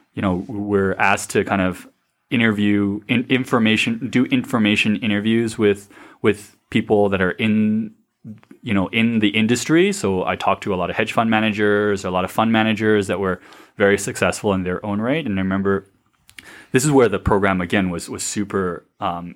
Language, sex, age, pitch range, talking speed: English, male, 20-39, 95-110 Hz, 185 wpm